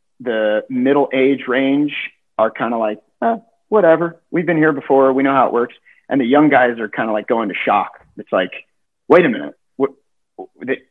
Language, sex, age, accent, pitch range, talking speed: English, male, 40-59, American, 110-145 Hz, 205 wpm